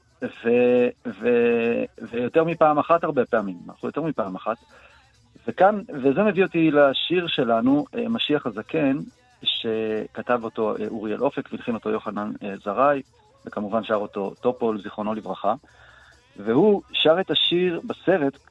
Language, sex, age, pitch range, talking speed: Hebrew, male, 40-59, 115-180 Hz, 125 wpm